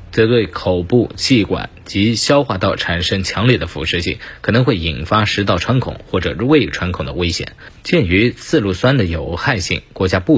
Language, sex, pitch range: Chinese, male, 90-125 Hz